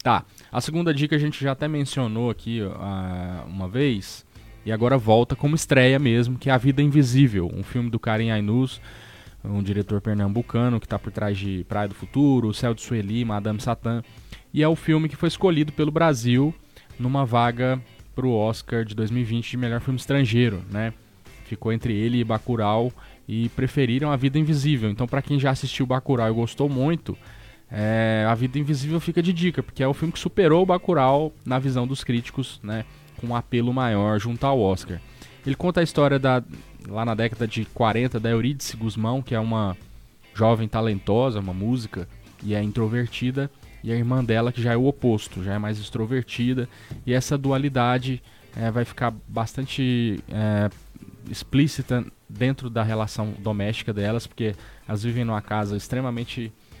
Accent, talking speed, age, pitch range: Brazilian, 175 wpm, 10-29, 110-135 Hz